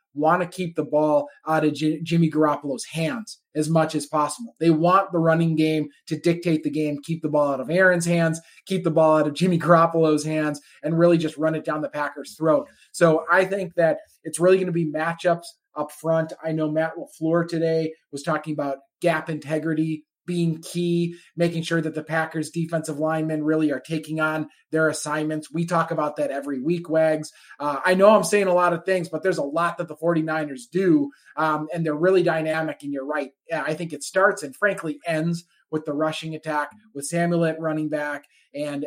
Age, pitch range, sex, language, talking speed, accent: 20-39, 155-175 Hz, male, English, 205 wpm, American